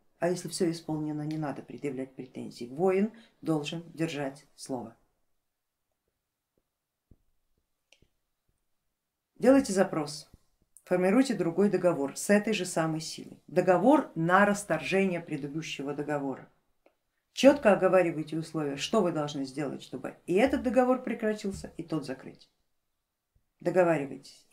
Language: Russian